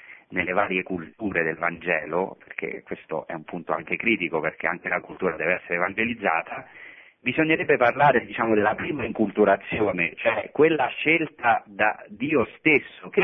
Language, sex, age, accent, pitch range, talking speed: Italian, male, 40-59, native, 95-140 Hz, 145 wpm